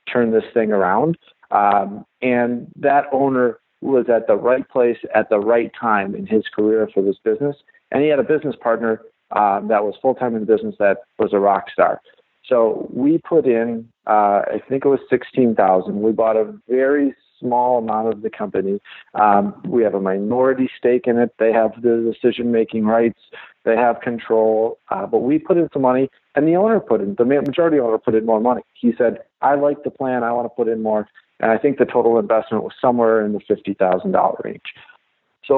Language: English